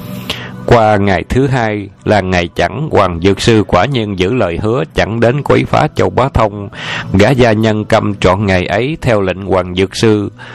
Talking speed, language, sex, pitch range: 195 wpm, Vietnamese, male, 95-115 Hz